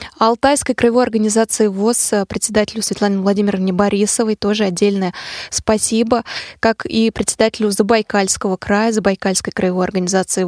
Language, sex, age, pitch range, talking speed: Russian, female, 20-39, 200-245 Hz, 110 wpm